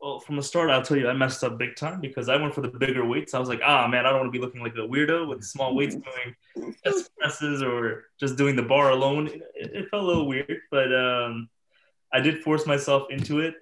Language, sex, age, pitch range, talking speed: English, male, 20-39, 120-140 Hz, 260 wpm